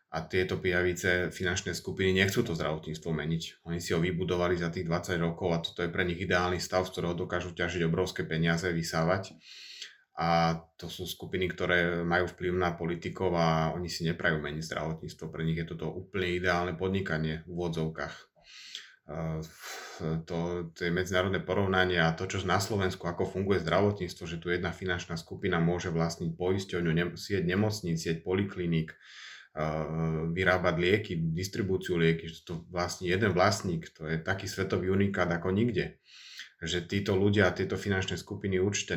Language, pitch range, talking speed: Slovak, 85-95 Hz, 165 wpm